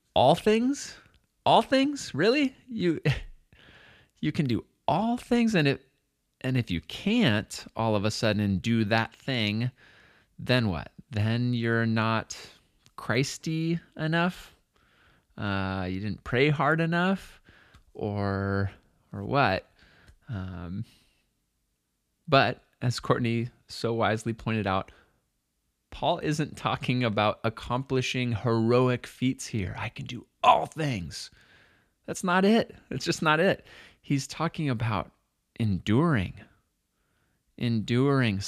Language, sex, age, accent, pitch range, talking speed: English, male, 20-39, American, 100-135 Hz, 115 wpm